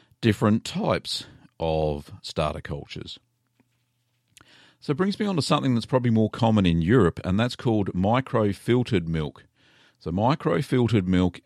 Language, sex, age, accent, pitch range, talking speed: English, male, 50-69, Australian, 95-130 Hz, 135 wpm